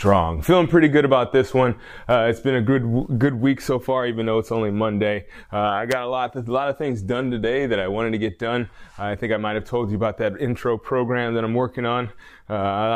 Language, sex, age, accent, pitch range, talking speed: English, male, 20-39, American, 105-130 Hz, 250 wpm